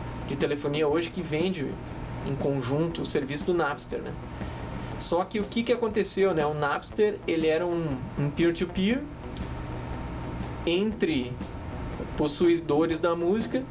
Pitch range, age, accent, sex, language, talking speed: 140-195 Hz, 20-39, Brazilian, male, Portuguese, 130 wpm